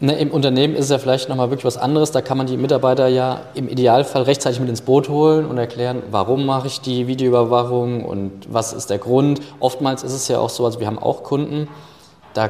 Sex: male